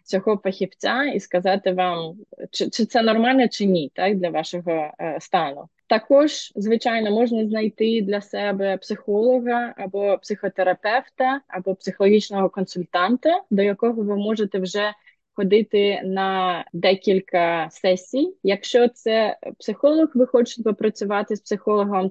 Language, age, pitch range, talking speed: Ukrainian, 20-39, 190-225 Hz, 115 wpm